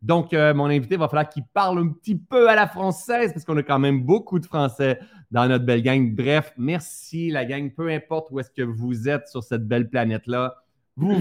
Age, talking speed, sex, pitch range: 30-49, 230 wpm, male, 130-155 Hz